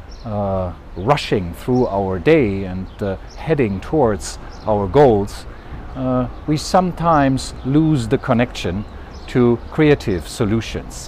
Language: English